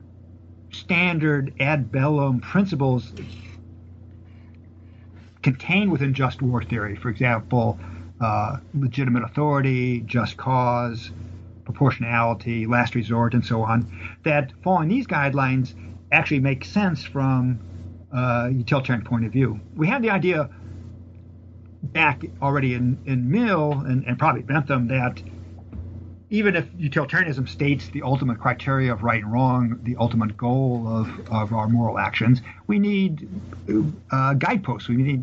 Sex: male